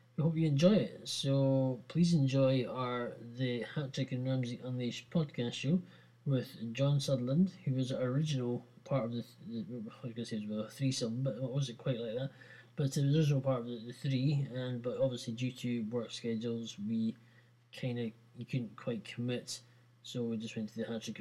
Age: 20-39